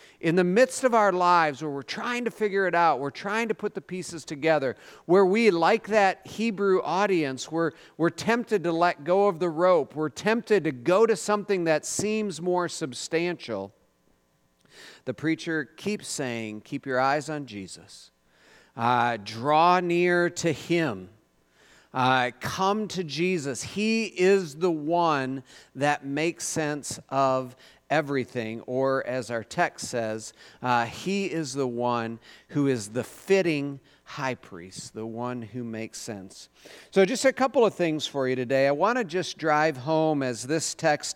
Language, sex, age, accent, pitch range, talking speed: English, male, 40-59, American, 130-175 Hz, 165 wpm